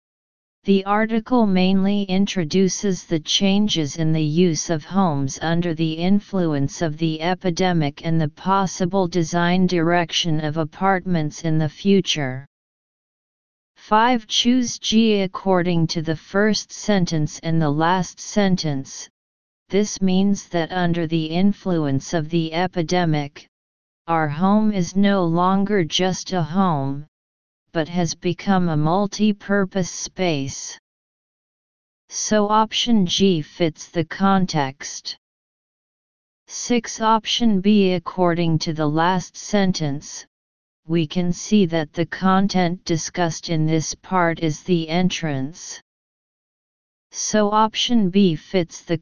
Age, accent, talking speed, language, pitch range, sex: 40-59, American, 115 wpm, English, 160-195 Hz, female